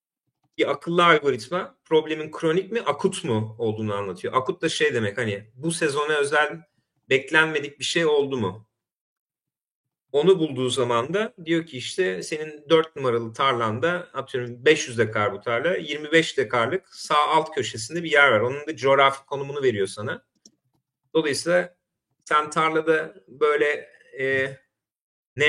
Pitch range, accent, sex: 125-165 Hz, native, male